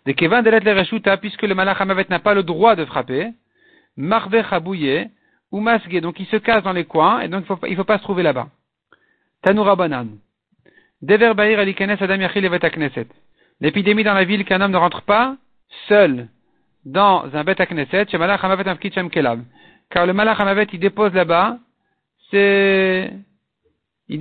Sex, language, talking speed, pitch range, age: male, French, 185 wpm, 165-210 Hz, 50-69